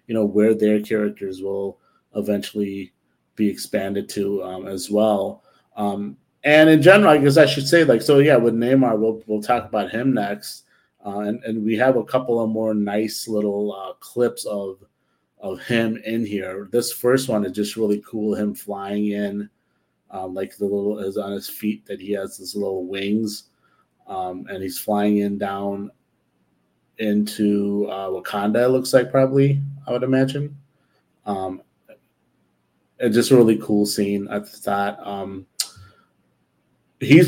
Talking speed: 165 wpm